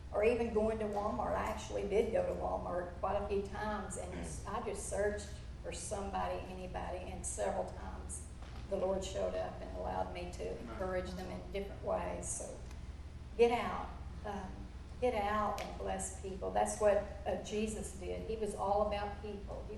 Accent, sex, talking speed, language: American, female, 175 wpm, English